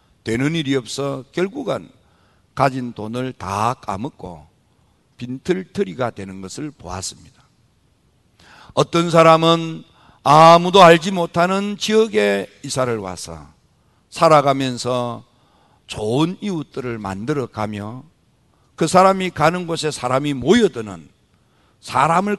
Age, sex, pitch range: 50-69, male, 110-170 Hz